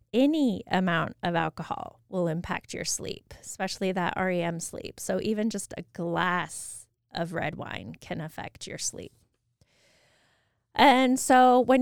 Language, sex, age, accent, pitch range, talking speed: English, female, 20-39, American, 170-240 Hz, 135 wpm